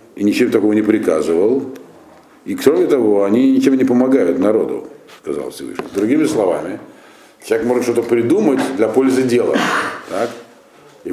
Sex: male